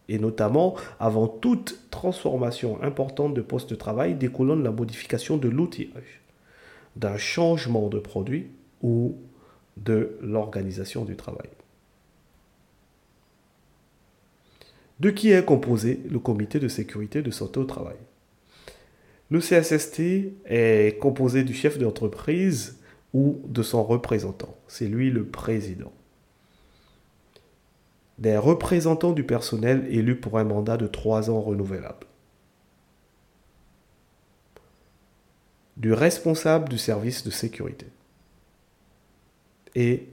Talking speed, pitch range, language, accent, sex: 105 wpm, 105-140 Hz, French, French, male